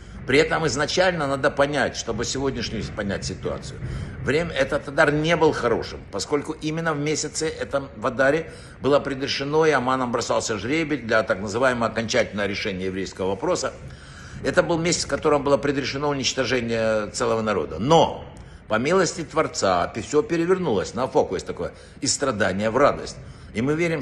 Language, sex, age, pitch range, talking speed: Russian, male, 60-79, 110-150 Hz, 150 wpm